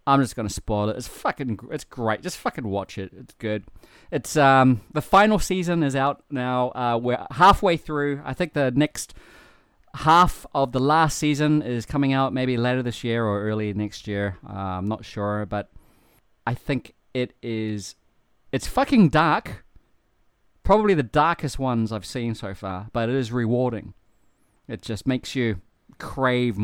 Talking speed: 175 wpm